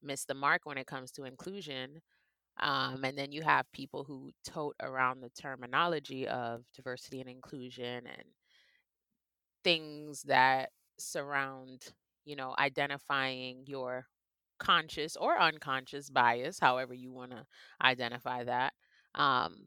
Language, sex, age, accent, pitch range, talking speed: English, female, 30-49, American, 130-165 Hz, 130 wpm